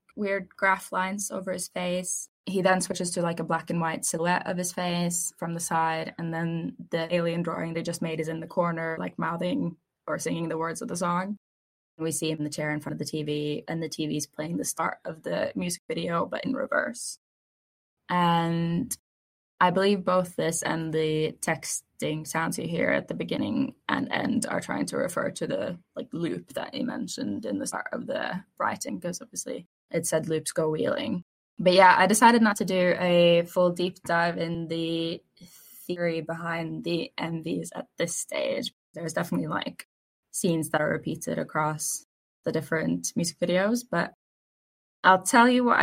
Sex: female